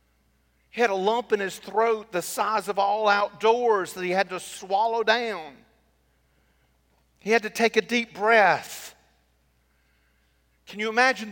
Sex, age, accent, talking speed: male, 50-69, American, 150 wpm